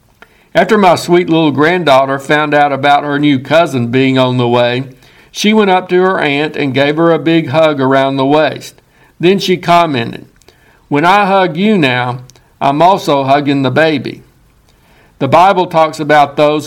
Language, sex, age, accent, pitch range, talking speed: English, male, 60-79, American, 135-170 Hz, 175 wpm